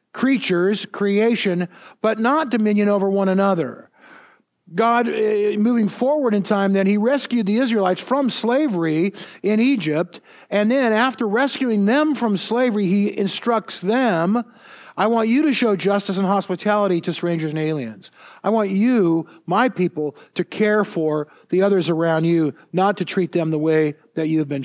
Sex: male